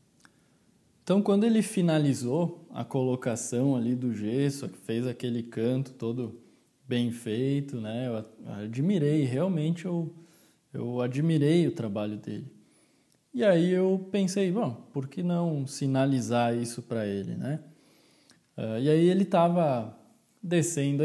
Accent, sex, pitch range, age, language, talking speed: Brazilian, male, 125-165 Hz, 20-39, Portuguese, 125 wpm